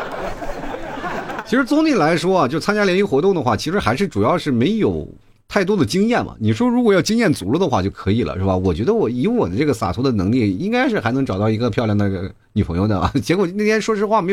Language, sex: Chinese, male